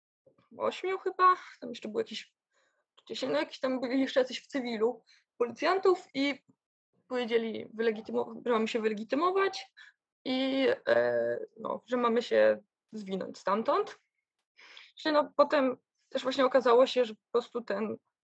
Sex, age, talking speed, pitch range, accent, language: female, 20-39, 135 wpm, 205-255 Hz, Polish, English